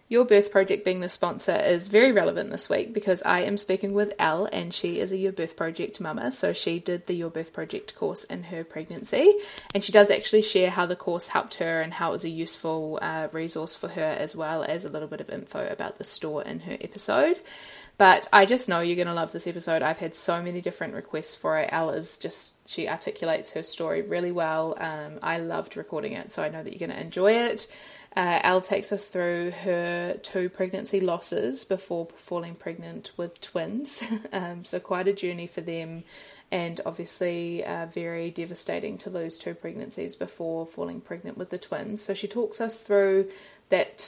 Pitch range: 165-200 Hz